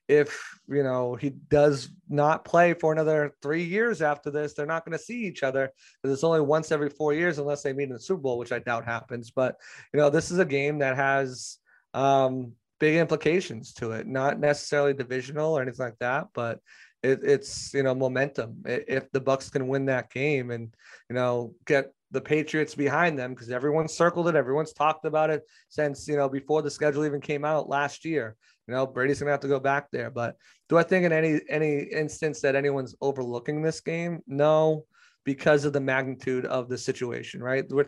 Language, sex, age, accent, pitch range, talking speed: English, male, 30-49, American, 130-155 Hz, 210 wpm